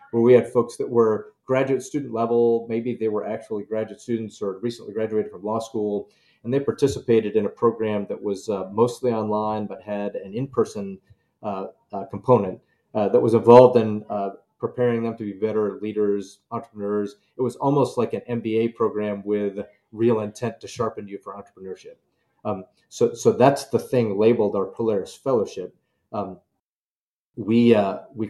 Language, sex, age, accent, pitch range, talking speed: English, male, 40-59, American, 105-120 Hz, 170 wpm